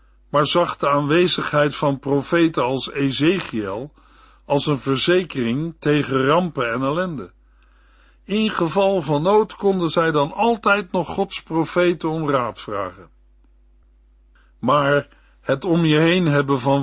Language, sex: Dutch, male